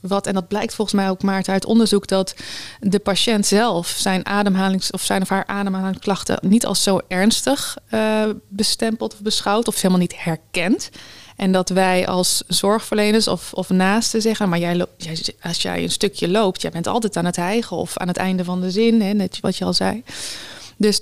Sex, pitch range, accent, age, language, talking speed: female, 185-215 Hz, Dutch, 20-39, Dutch, 200 wpm